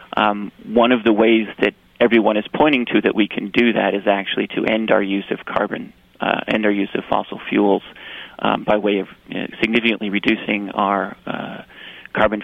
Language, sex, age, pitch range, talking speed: English, male, 40-59, 105-115 Hz, 200 wpm